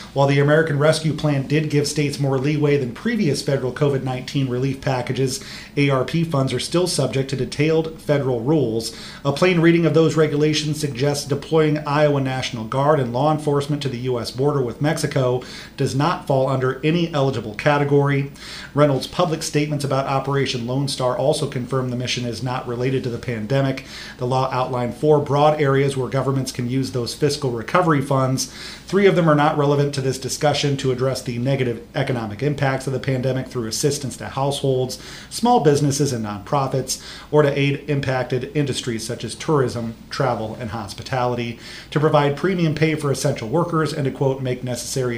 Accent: American